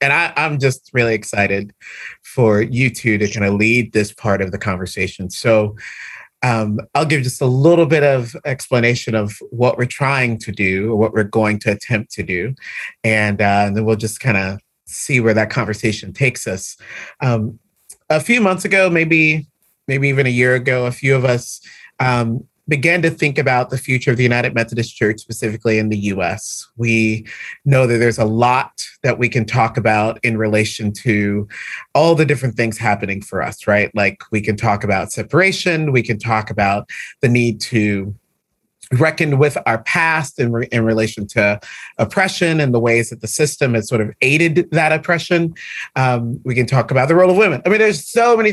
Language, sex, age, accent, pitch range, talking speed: English, male, 30-49, American, 110-160 Hz, 195 wpm